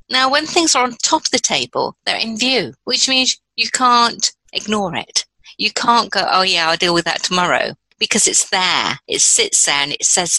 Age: 50-69